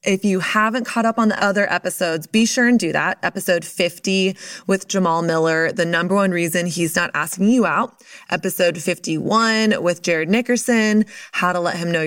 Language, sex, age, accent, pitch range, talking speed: English, female, 20-39, American, 170-210 Hz, 190 wpm